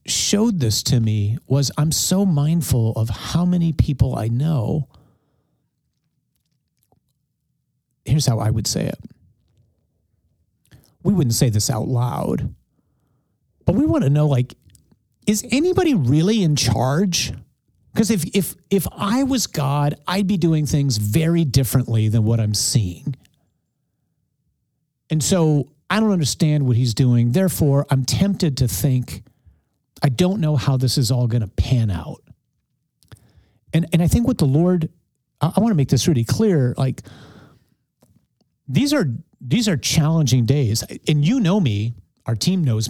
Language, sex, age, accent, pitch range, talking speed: English, male, 40-59, American, 120-160 Hz, 150 wpm